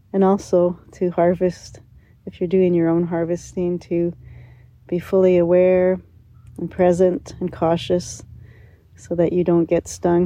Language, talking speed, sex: English, 140 wpm, female